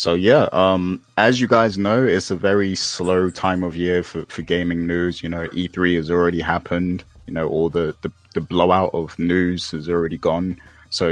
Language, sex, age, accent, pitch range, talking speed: English, male, 20-39, British, 80-90 Hz, 200 wpm